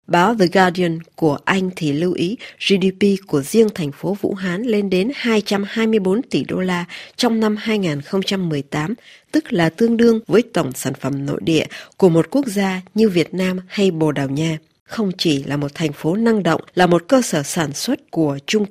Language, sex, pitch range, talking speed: Vietnamese, female, 165-220 Hz, 195 wpm